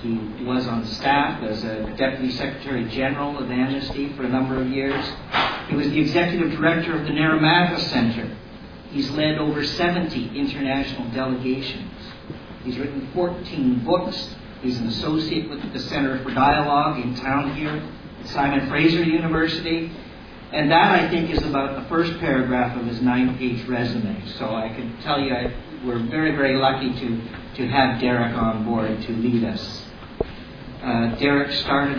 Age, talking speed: 50-69, 160 wpm